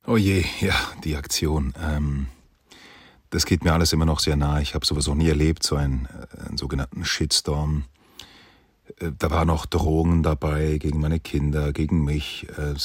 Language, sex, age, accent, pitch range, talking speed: German, male, 40-59, German, 75-90 Hz, 170 wpm